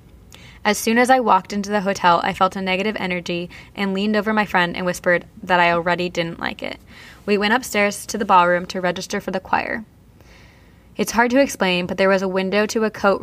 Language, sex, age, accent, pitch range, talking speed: English, female, 10-29, American, 180-210 Hz, 220 wpm